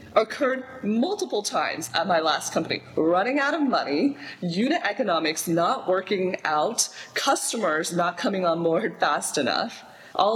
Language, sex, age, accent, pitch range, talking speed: English, female, 20-39, American, 160-225 Hz, 140 wpm